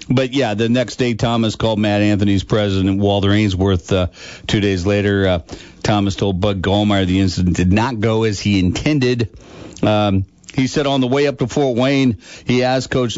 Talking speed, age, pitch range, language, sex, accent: 190 wpm, 50-69, 95-120 Hz, English, male, American